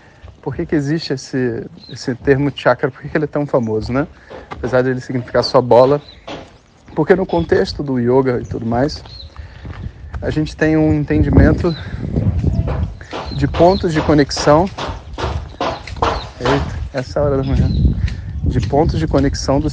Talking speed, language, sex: 150 wpm, Portuguese, male